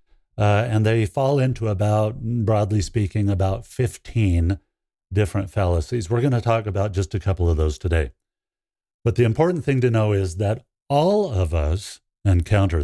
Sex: male